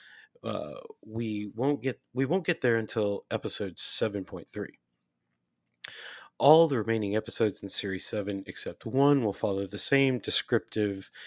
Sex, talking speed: male, 145 wpm